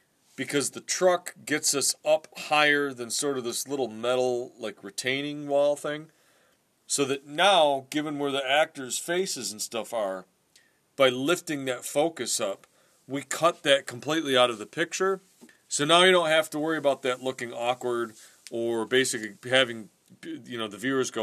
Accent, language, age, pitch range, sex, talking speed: American, English, 40-59, 120-165 Hz, male, 170 wpm